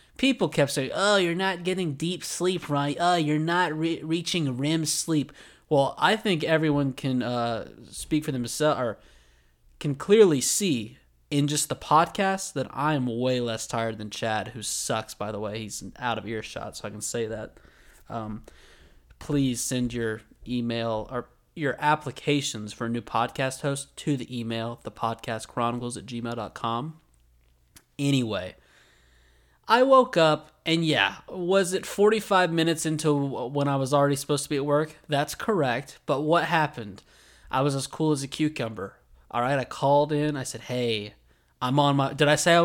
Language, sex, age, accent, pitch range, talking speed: English, male, 20-39, American, 115-155 Hz, 170 wpm